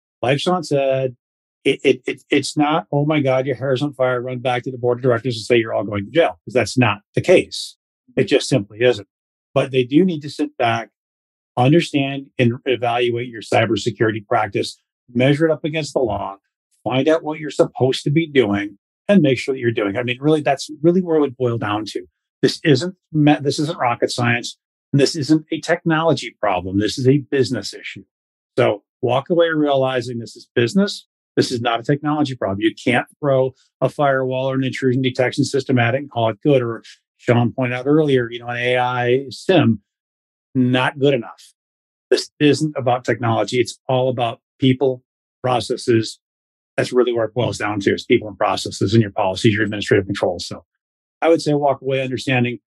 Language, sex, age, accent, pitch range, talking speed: English, male, 40-59, American, 115-145 Hz, 200 wpm